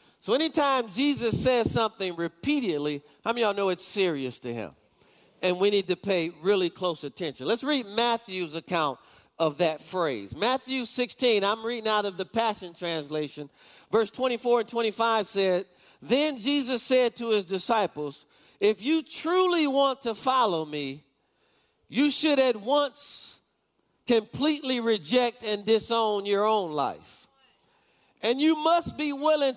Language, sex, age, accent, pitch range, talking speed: English, male, 40-59, American, 190-275 Hz, 150 wpm